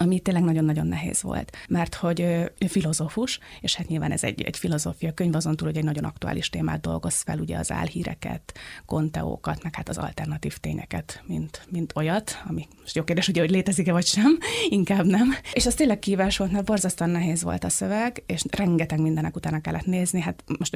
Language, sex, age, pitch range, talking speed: Hungarian, female, 20-39, 140-190 Hz, 195 wpm